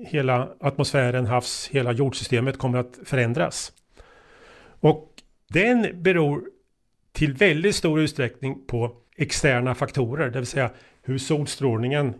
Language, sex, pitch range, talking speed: Swedish, male, 125-150 Hz, 115 wpm